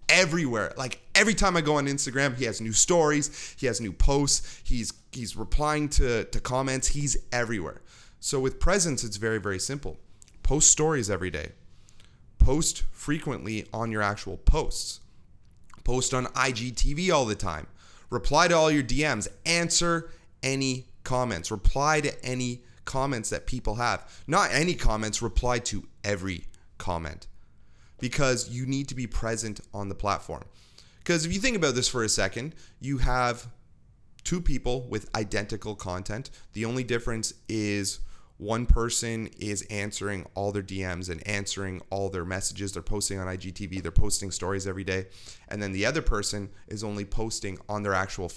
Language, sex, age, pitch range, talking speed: English, male, 30-49, 100-130 Hz, 160 wpm